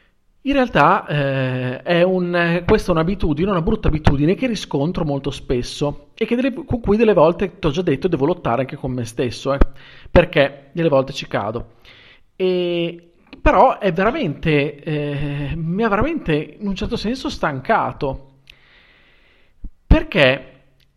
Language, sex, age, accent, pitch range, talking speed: Italian, male, 40-59, native, 140-215 Hz, 150 wpm